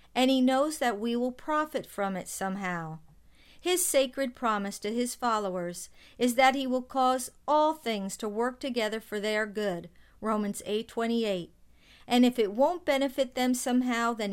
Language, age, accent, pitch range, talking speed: English, 50-69, American, 205-255 Hz, 170 wpm